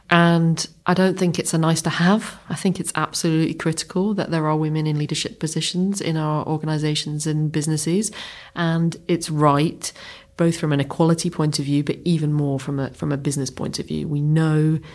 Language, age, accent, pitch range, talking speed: English, 30-49, British, 140-165 Hz, 185 wpm